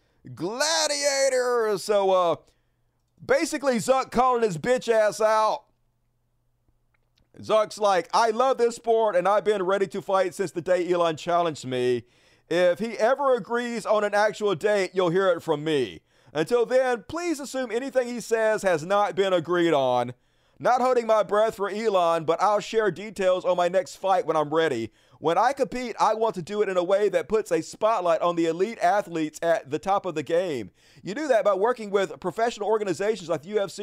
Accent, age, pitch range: American, 40-59, 160-225 Hz